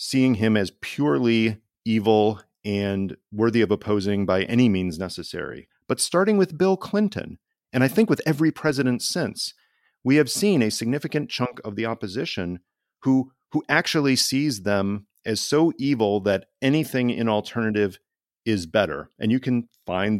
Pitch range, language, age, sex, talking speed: 100-130 Hz, English, 40-59, male, 155 wpm